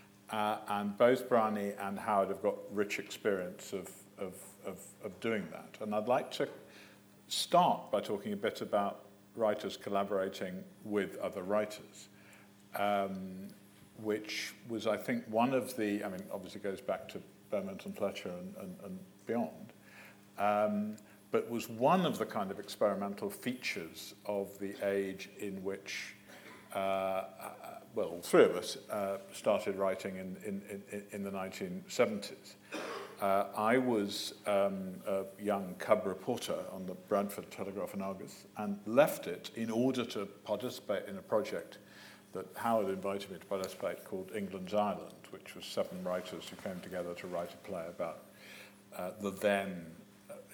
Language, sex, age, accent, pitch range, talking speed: English, male, 50-69, British, 95-105 Hz, 155 wpm